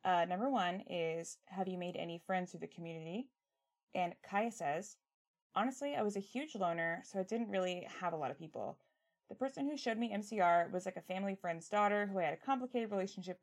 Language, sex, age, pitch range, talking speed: English, female, 20-39, 170-210 Hz, 215 wpm